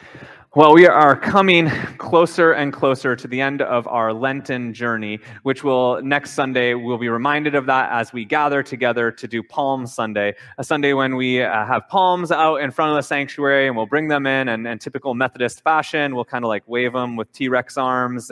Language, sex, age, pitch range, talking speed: English, male, 20-39, 120-150 Hz, 205 wpm